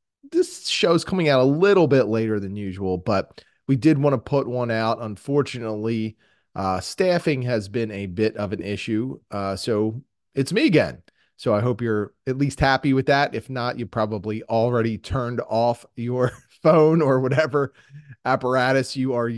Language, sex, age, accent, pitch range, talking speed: English, male, 30-49, American, 95-130 Hz, 175 wpm